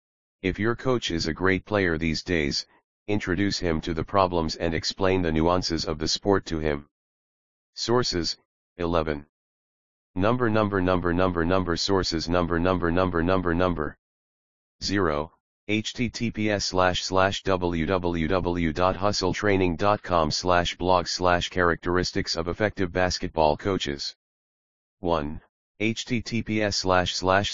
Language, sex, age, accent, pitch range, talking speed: English, male, 40-59, American, 85-100 Hz, 105 wpm